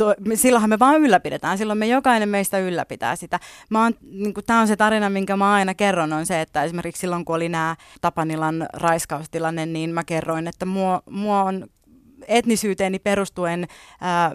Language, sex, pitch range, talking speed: Finnish, female, 170-205 Hz, 165 wpm